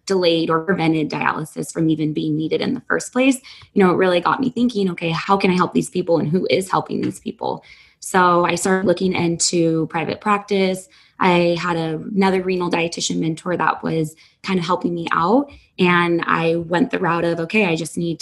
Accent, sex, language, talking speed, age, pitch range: American, female, English, 205 wpm, 20-39, 170-195 Hz